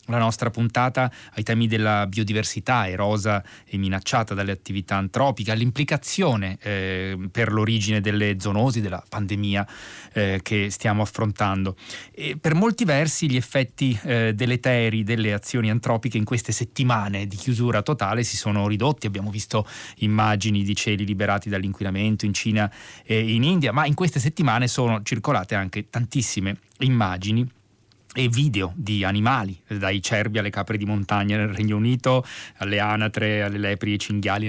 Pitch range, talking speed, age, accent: 105-125 Hz, 150 wpm, 20-39, native